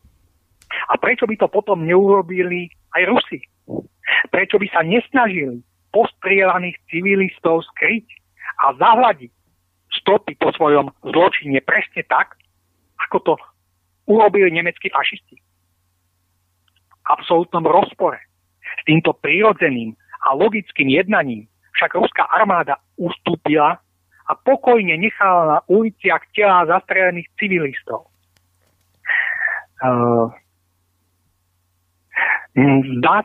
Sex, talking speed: male, 90 wpm